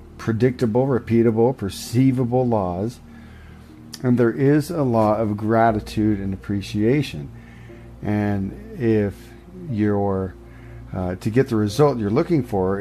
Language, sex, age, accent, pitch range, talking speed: English, male, 40-59, American, 105-125 Hz, 110 wpm